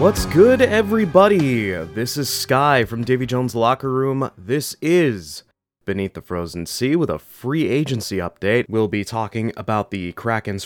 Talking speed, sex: 160 wpm, male